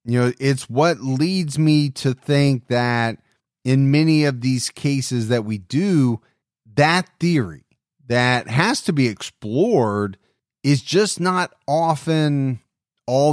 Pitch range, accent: 125-155 Hz, American